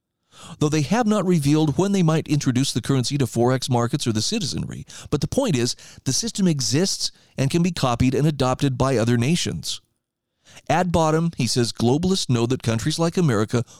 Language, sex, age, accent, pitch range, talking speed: English, male, 40-59, American, 120-165 Hz, 185 wpm